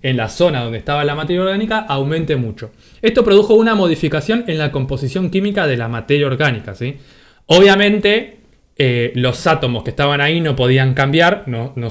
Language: Spanish